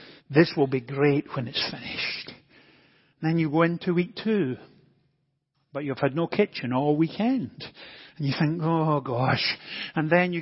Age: 50-69